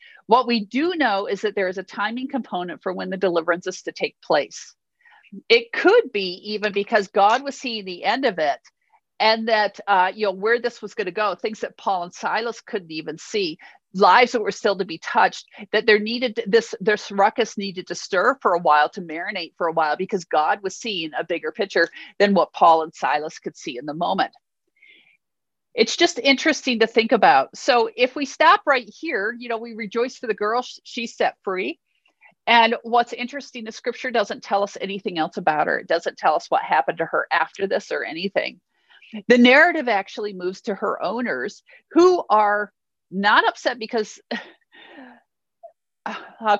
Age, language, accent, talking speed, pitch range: 50-69, English, American, 195 wpm, 195-255 Hz